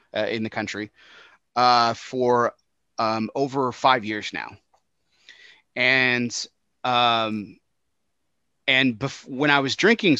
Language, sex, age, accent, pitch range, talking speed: English, male, 30-49, American, 110-145 Hz, 110 wpm